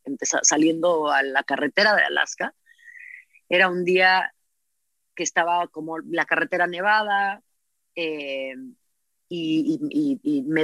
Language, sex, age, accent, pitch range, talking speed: Spanish, female, 30-49, Mexican, 175-235 Hz, 120 wpm